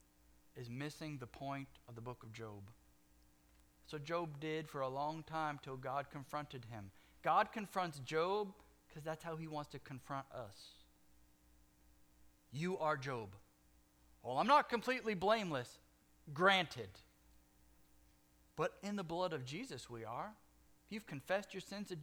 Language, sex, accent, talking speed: English, male, American, 145 wpm